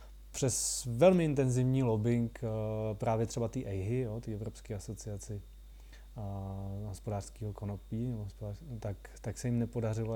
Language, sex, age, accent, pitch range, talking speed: Czech, male, 30-49, native, 100-125 Hz, 105 wpm